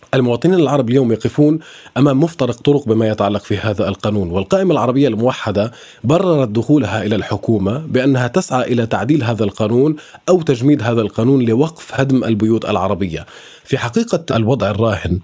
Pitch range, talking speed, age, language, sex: 110-135 Hz, 145 wpm, 30-49, Arabic, male